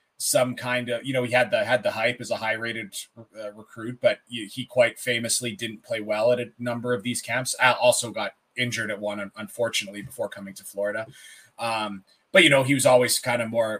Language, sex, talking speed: English, male, 215 wpm